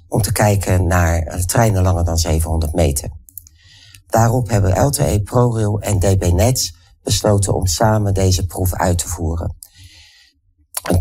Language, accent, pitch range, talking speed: Dutch, Dutch, 85-105 Hz, 135 wpm